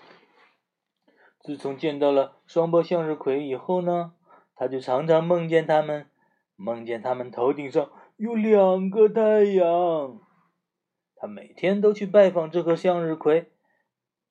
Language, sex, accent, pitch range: Chinese, male, native, 155-195 Hz